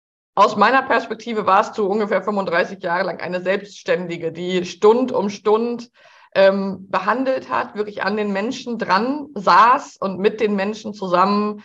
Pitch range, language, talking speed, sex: 200-240 Hz, German, 150 wpm, female